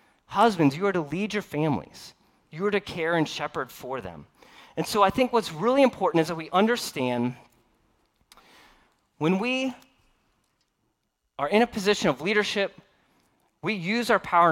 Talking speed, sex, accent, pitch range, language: 155 wpm, male, American, 135-195 Hz, English